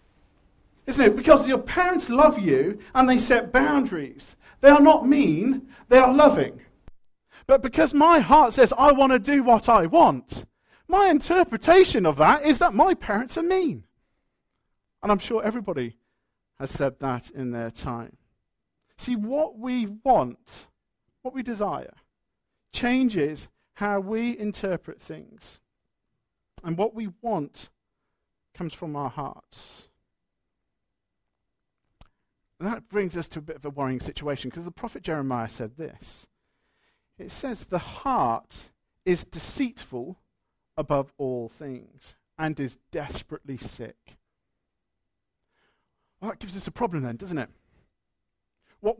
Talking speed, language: 135 wpm, English